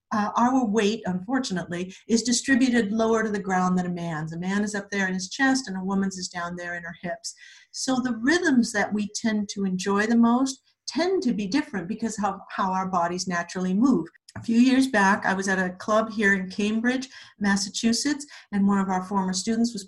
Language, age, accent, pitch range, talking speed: English, 50-69, American, 180-235 Hz, 215 wpm